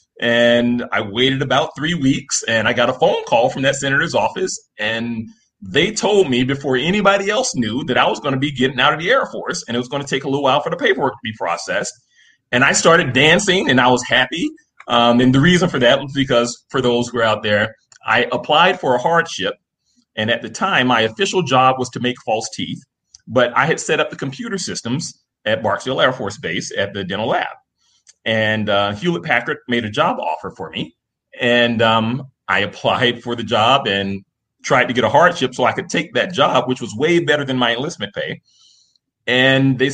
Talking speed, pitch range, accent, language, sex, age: 220 wpm, 120-155 Hz, American, English, male, 30-49